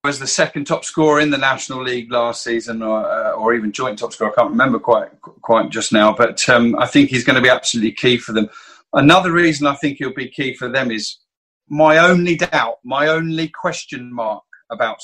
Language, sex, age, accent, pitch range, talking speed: English, male, 40-59, British, 115-150 Hz, 215 wpm